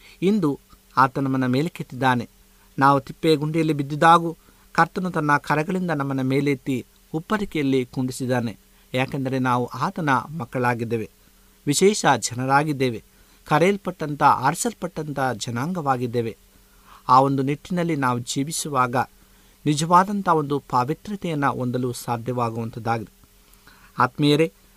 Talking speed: 85 wpm